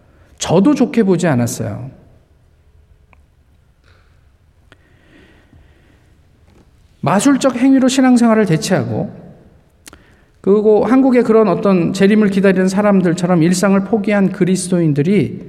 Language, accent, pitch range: Korean, native, 115-190 Hz